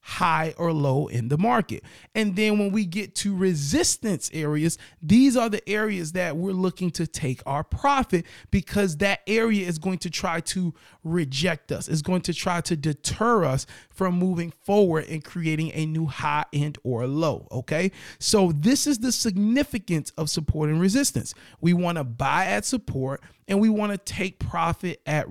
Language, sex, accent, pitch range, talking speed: English, male, American, 150-195 Hz, 180 wpm